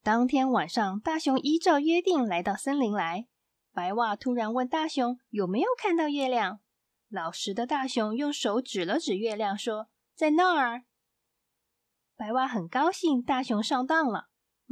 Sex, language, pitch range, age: female, Chinese, 215-295 Hz, 20-39